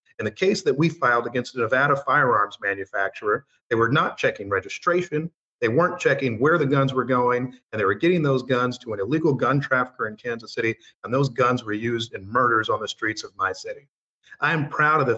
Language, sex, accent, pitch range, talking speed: English, male, American, 130-180 Hz, 220 wpm